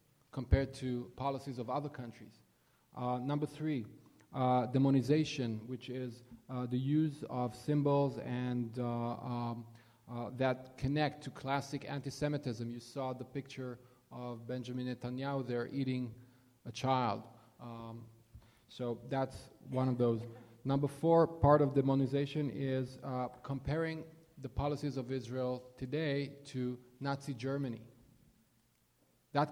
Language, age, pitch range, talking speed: English, 30-49, 125-140 Hz, 125 wpm